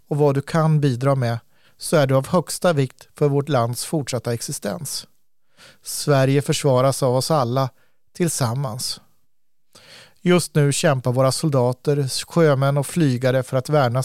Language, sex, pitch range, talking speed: Swedish, male, 130-155 Hz, 145 wpm